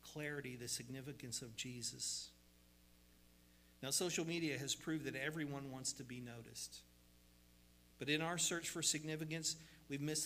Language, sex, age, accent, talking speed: English, male, 50-69, American, 140 wpm